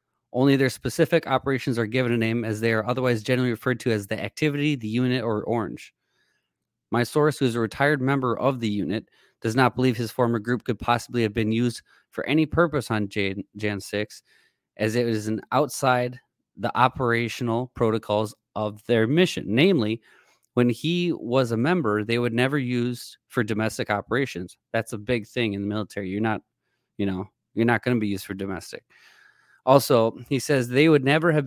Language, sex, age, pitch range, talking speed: English, male, 20-39, 110-135 Hz, 190 wpm